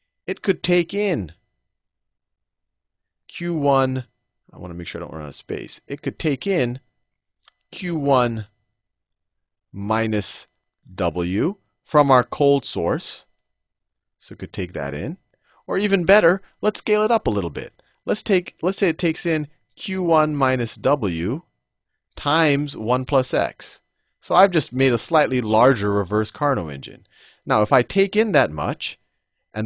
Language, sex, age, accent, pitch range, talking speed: English, male, 40-59, American, 110-170 Hz, 150 wpm